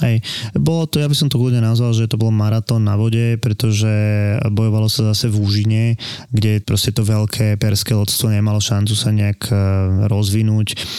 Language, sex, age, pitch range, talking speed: Slovak, male, 20-39, 105-115 Hz, 175 wpm